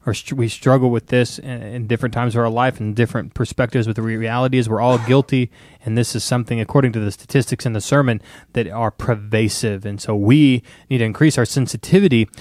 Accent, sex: American, male